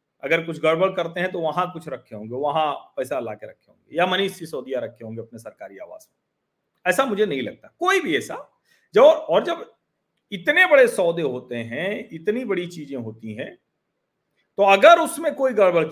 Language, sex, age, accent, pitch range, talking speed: Hindi, male, 40-59, native, 155-225 Hz, 190 wpm